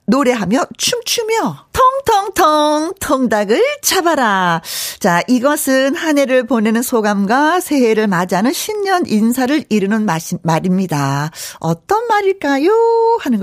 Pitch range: 190-310 Hz